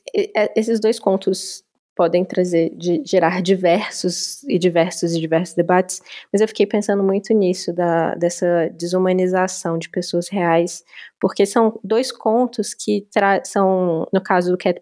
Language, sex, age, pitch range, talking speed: Portuguese, female, 20-39, 175-215 Hz, 145 wpm